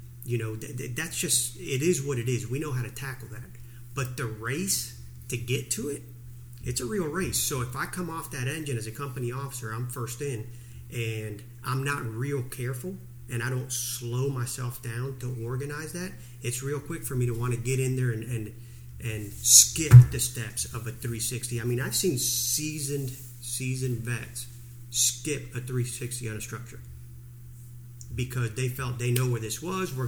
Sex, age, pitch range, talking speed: male, 40-59, 120-130 Hz, 190 wpm